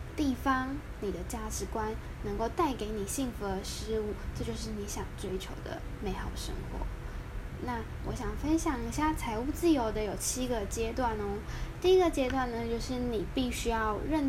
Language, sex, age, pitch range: Chinese, female, 10-29, 210-285 Hz